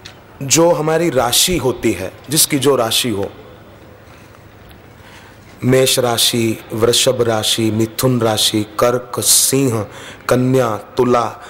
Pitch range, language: 110-135 Hz, Hindi